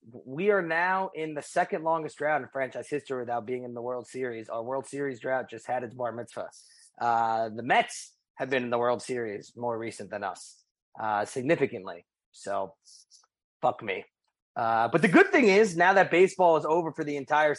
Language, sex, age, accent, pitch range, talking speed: English, male, 30-49, American, 130-185 Hz, 200 wpm